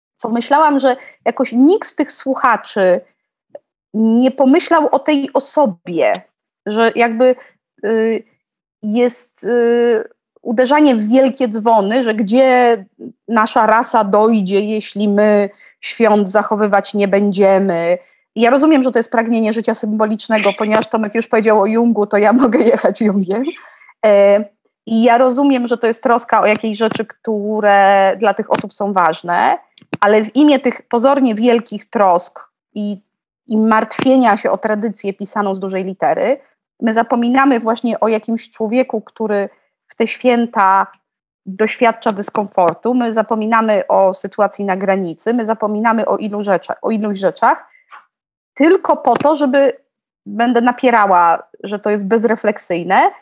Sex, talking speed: female, 130 wpm